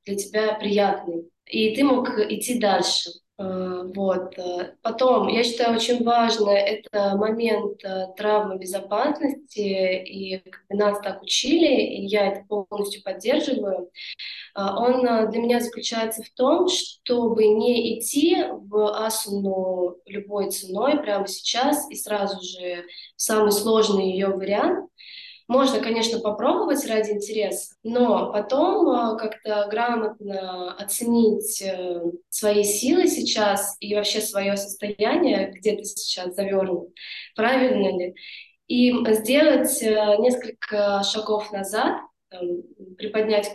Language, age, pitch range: Russian, 20-39, 200-240 Hz